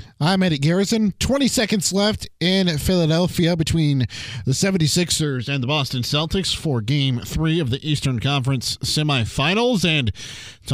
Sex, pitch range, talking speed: male, 130-170 Hz, 140 wpm